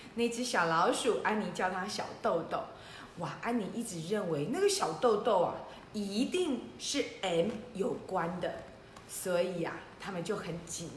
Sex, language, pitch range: female, Chinese, 210-310 Hz